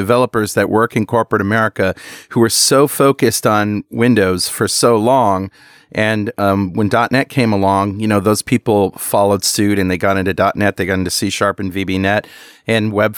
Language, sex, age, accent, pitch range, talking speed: English, male, 40-59, American, 95-120 Hz, 190 wpm